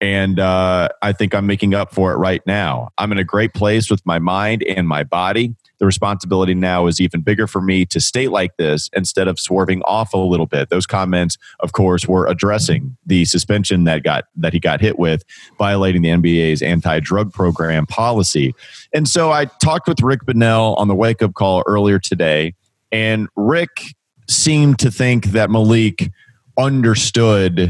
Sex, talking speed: male, 180 wpm